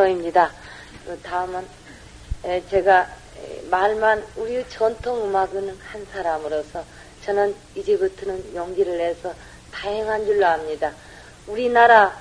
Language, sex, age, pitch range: Korean, female, 40-59, 180-230 Hz